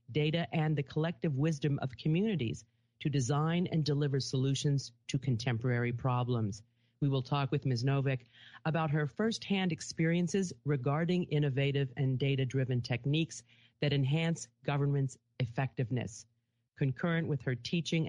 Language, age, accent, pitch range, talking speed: English, 40-59, American, 125-160 Hz, 125 wpm